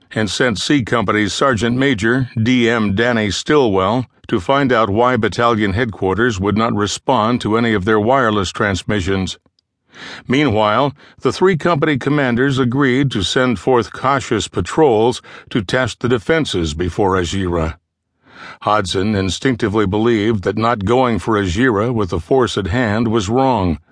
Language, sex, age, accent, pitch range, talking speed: English, male, 60-79, American, 100-130 Hz, 140 wpm